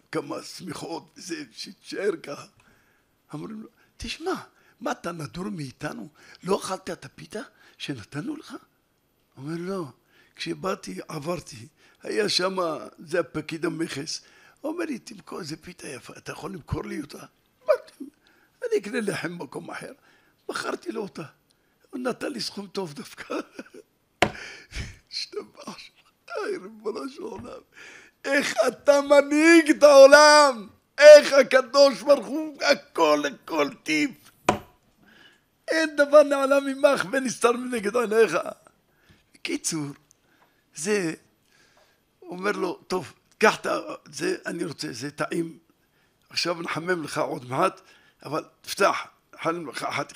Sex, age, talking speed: male, 60-79, 115 wpm